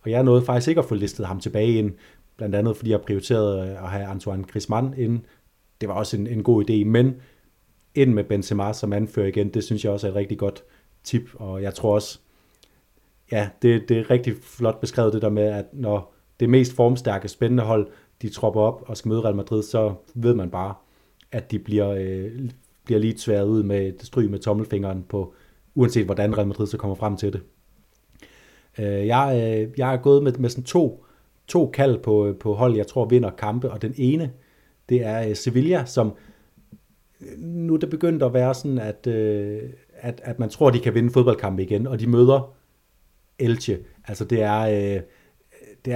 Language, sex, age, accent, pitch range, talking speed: Danish, male, 30-49, native, 105-125 Hz, 195 wpm